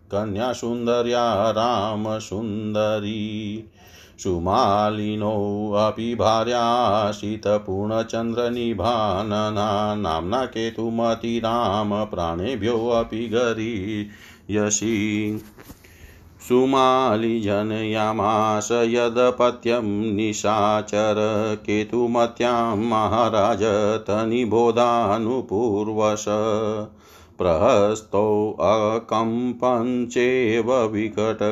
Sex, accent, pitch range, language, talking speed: male, native, 105-115 Hz, Hindi, 35 wpm